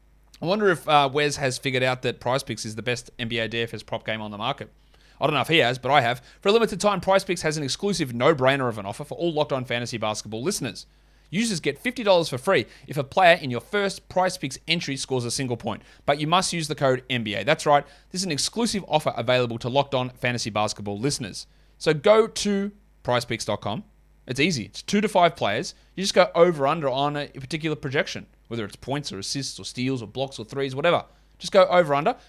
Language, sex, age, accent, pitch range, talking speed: English, male, 30-49, Australian, 120-165 Hz, 225 wpm